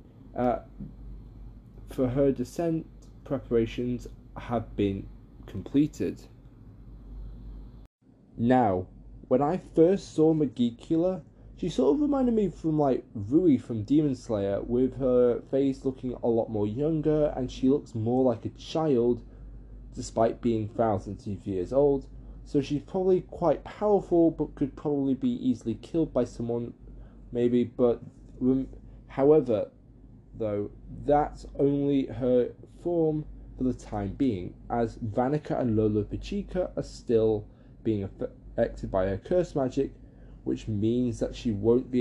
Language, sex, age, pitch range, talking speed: English, male, 20-39, 115-145 Hz, 130 wpm